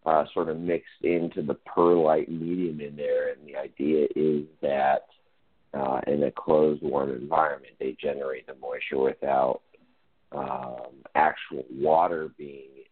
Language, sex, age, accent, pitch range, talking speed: English, male, 30-49, American, 75-120 Hz, 140 wpm